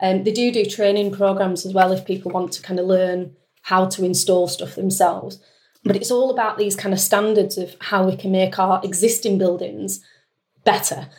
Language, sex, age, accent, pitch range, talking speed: English, female, 30-49, British, 185-210 Hz, 200 wpm